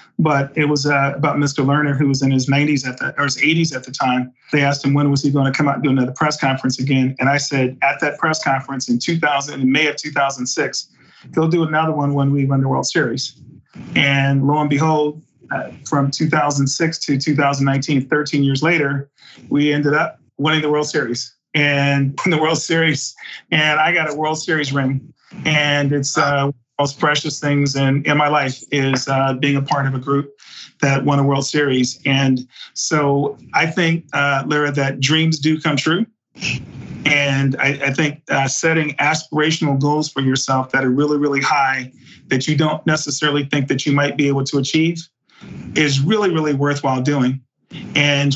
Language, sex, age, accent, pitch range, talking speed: English, male, 40-59, American, 135-150 Hz, 190 wpm